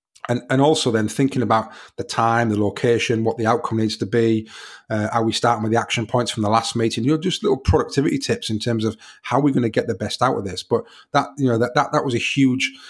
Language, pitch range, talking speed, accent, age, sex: English, 105-120 Hz, 265 wpm, British, 30-49, male